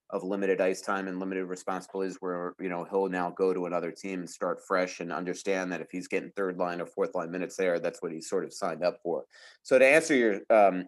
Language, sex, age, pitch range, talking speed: English, male, 30-49, 95-110 Hz, 250 wpm